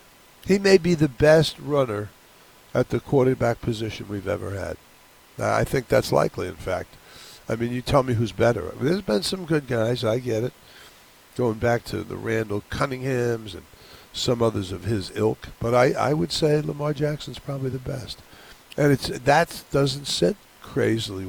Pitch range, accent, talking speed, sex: 110-145 Hz, American, 185 wpm, male